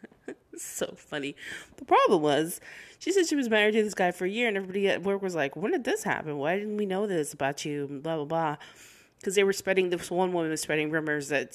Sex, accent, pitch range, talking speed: female, American, 155-225 Hz, 245 wpm